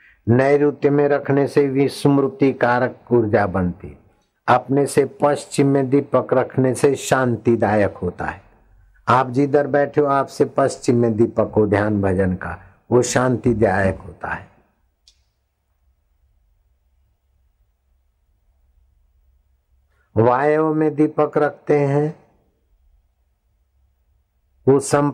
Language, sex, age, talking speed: Hindi, male, 60-79, 95 wpm